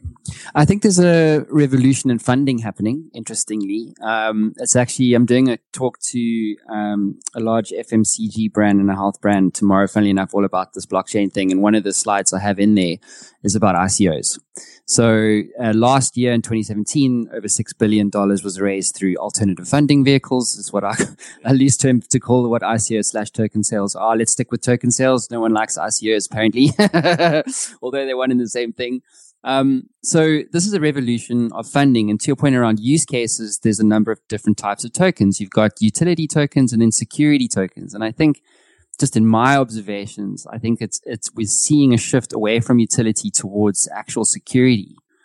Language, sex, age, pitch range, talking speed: English, male, 20-39, 105-130 Hz, 190 wpm